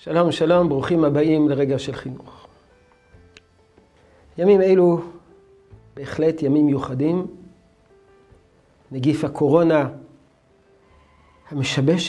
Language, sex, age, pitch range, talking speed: Hebrew, male, 50-69, 140-185 Hz, 75 wpm